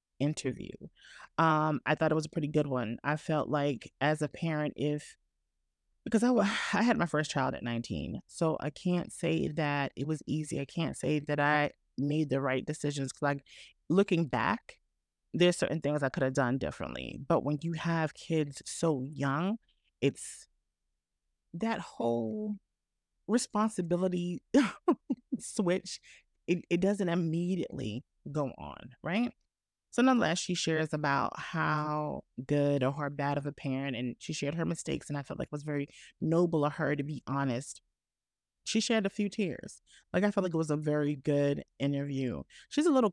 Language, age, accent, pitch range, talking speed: English, 30-49, American, 140-175 Hz, 170 wpm